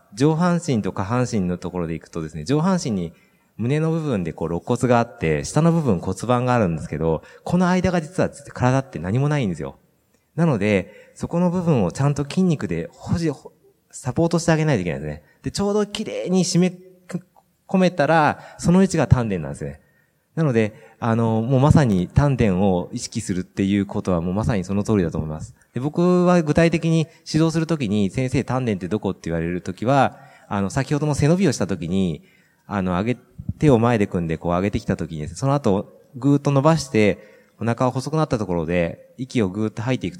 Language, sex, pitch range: Japanese, male, 100-155 Hz